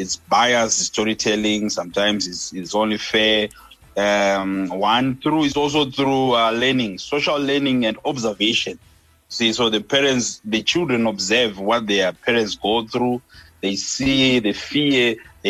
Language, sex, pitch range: English, male, 100-125 Hz